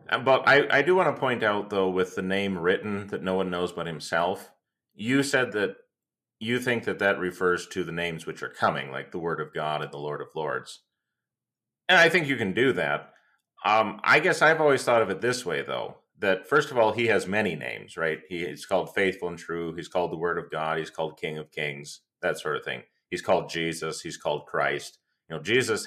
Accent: American